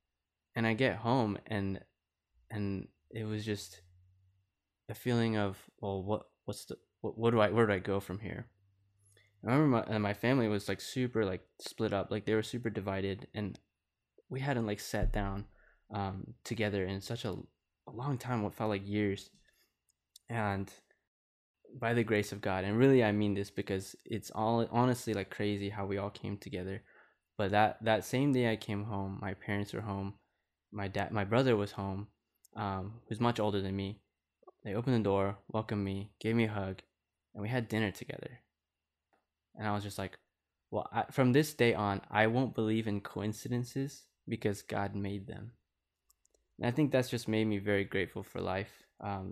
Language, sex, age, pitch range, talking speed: English, male, 20-39, 100-115 Hz, 185 wpm